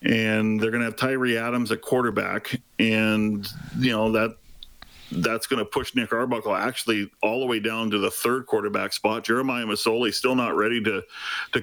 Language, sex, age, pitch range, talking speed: English, male, 40-59, 110-130 Hz, 185 wpm